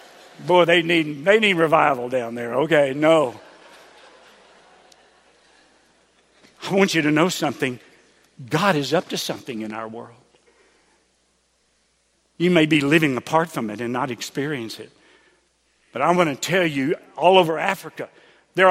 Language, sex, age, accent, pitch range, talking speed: English, male, 60-79, American, 135-195 Hz, 140 wpm